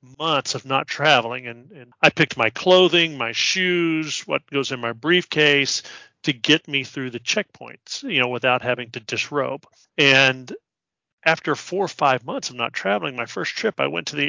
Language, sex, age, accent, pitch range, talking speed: English, male, 40-59, American, 130-165 Hz, 190 wpm